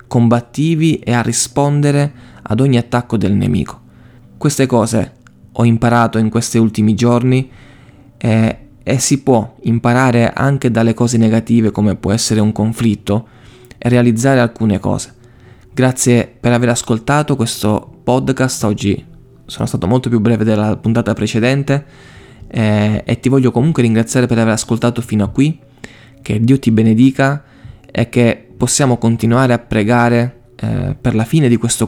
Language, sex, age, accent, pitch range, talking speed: Italian, male, 20-39, native, 110-125 Hz, 145 wpm